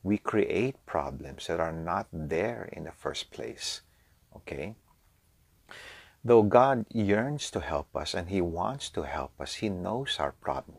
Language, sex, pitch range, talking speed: English, male, 80-110 Hz, 155 wpm